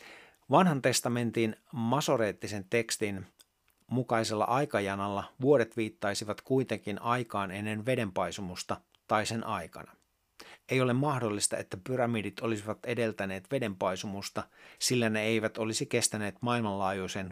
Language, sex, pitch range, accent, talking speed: Finnish, male, 100-120 Hz, native, 100 wpm